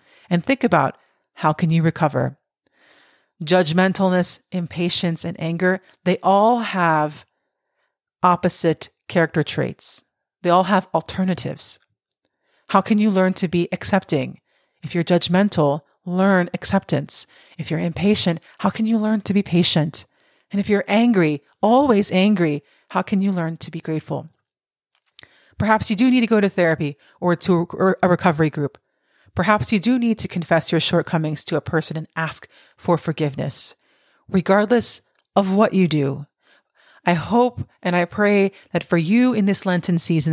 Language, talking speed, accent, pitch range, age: English, 150 wpm, American, 165-200 Hz, 40-59